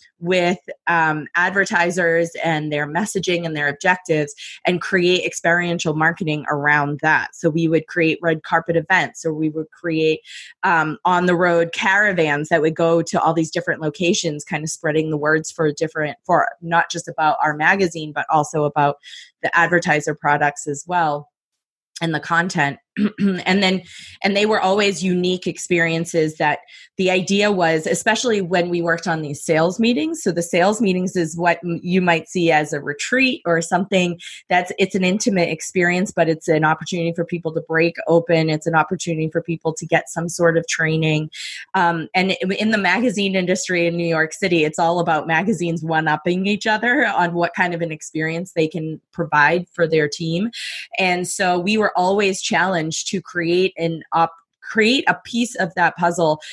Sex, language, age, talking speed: female, English, 20-39, 180 wpm